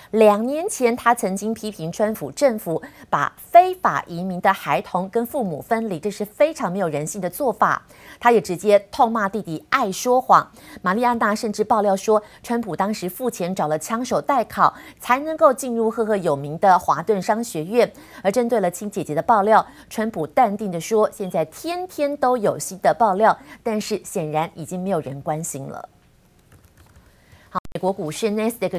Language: Chinese